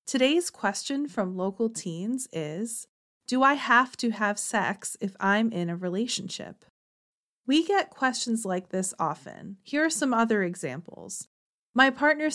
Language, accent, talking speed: English, American, 145 wpm